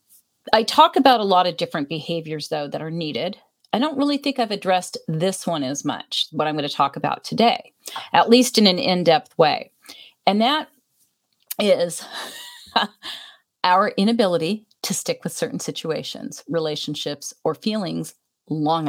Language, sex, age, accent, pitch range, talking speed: English, female, 40-59, American, 165-220 Hz, 155 wpm